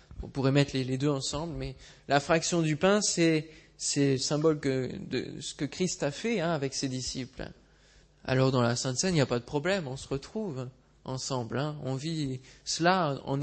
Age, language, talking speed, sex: 20-39, French, 205 wpm, male